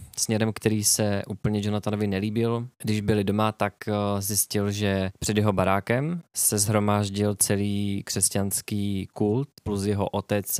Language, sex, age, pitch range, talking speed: Czech, male, 20-39, 95-105 Hz, 130 wpm